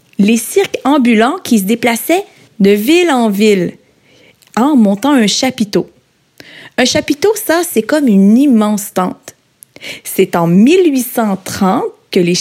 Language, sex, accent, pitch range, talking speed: French, female, Canadian, 205-295 Hz, 130 wpm